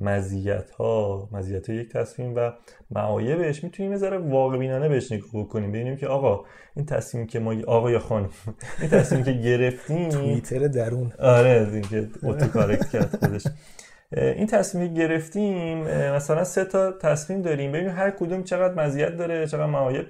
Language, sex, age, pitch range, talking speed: Persian, male, 30-49, 115-160 Hz, 150 wpm